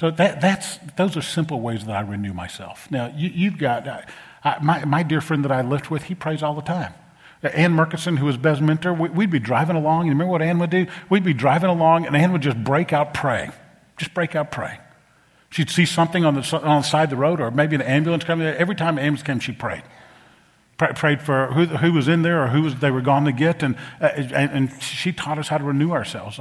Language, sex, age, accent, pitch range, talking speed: English, male, 50-69, American, 120-165 Hz, 250 wpm